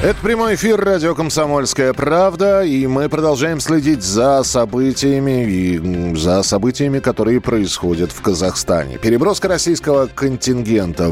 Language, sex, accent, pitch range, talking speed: Russian, male, native, 95-140 Hz, 120 wpm